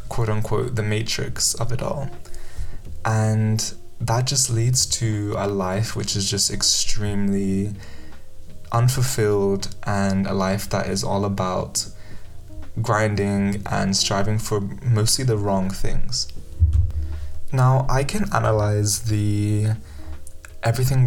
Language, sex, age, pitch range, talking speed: English, male, 20-39, 95-115 Hz, 110 wpm